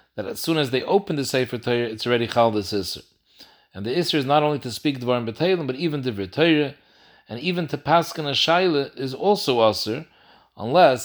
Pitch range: 120-155 Hz